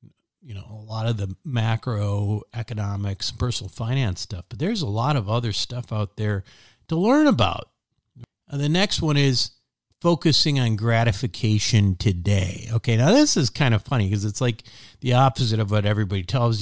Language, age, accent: English, 50-69, American